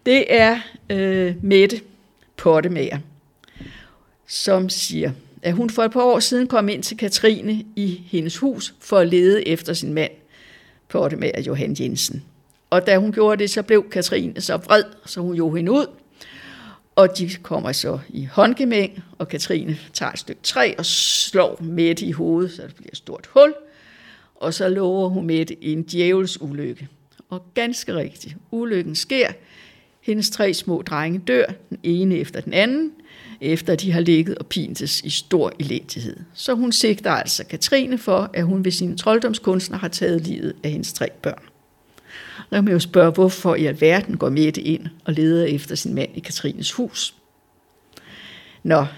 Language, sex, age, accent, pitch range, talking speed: Danish, female, 60-79, native, 165-215 Hz, 170 wpm